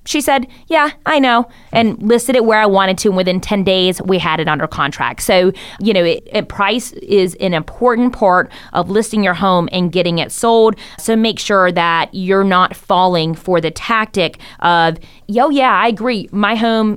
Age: 20-39